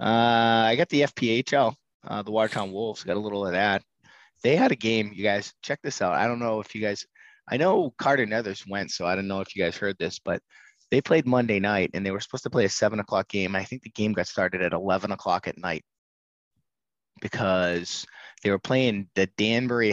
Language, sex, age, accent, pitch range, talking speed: English, male, 20-39, American, 100-120 Hz, 230 wpm